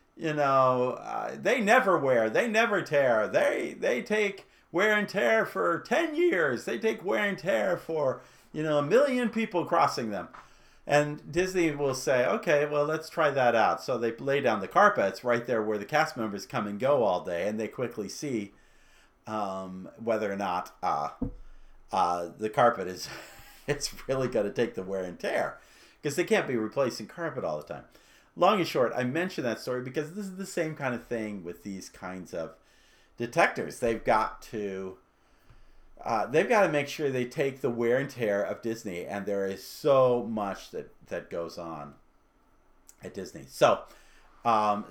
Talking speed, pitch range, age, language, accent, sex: 185 wpm, 95-150 Hz, 50-69, English, American, male